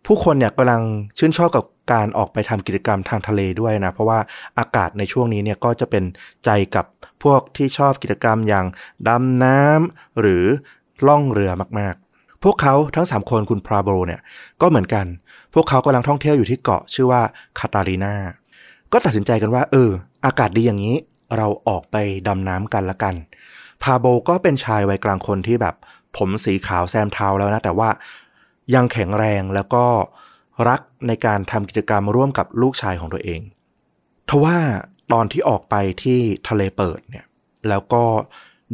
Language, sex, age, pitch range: Thai, male, 20-39, 100-125 Hz